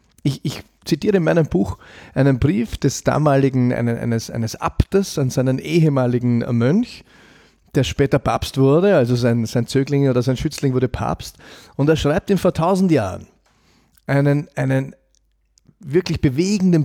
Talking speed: 145 wpm